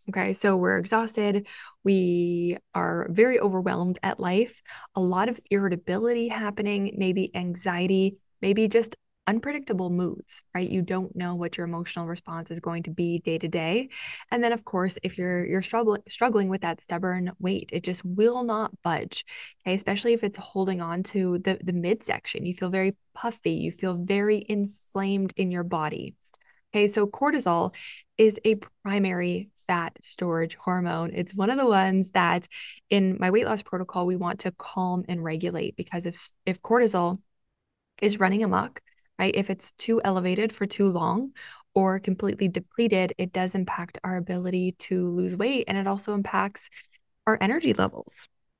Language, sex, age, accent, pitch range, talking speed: English, female, 20-39, American, 180-210 Hz, 165 wpm